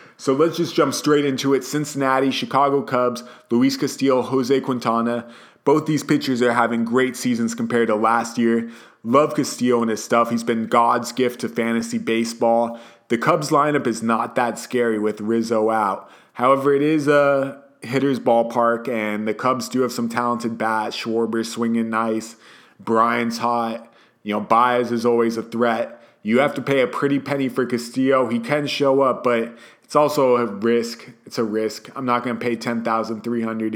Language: English